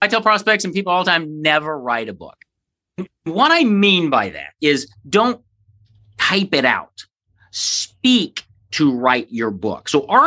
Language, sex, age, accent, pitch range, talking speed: English, male, 40-59, American, 150-225 Hz, 170 wpm